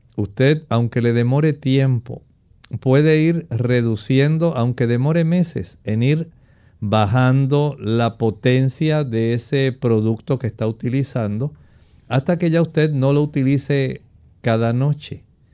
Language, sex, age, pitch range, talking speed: Spanish, male, 50-69, 115-145 Hz, 120 wpm